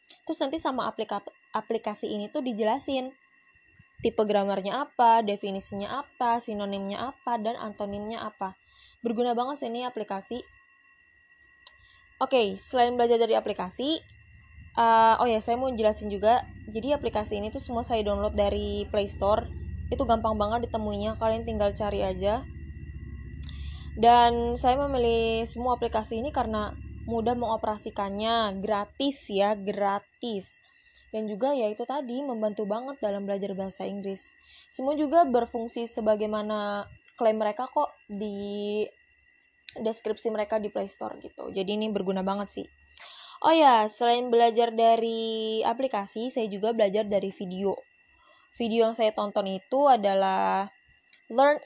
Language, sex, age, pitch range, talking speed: Indonesian, female, 20-39, 205-245 Hz, 130 wpm